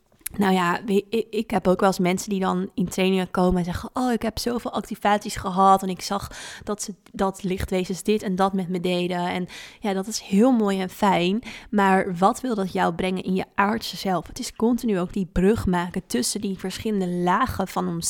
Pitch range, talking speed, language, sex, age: 185-215 Hz, 215 wpm, Dutch, female, 20-39